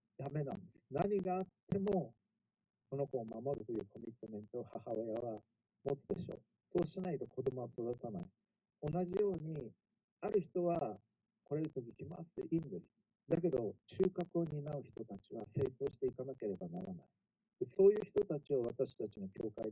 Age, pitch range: 50-69, 130-175 Hz